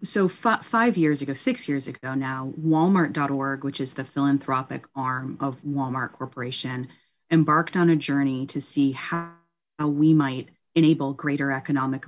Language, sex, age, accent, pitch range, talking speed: English, female, 30-49, American, 135-160 Hz, 150 wpm